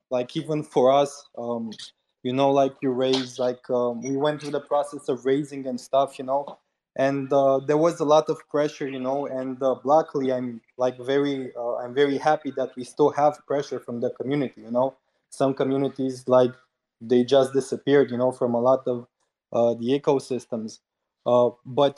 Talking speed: 190 wpm